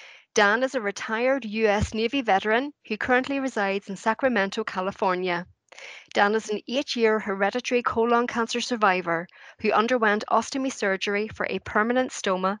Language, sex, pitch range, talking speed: English, female, 195-235 Hz, 145 wpm